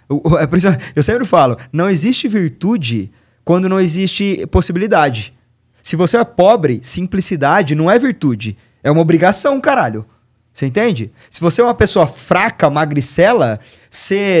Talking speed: 135 wpm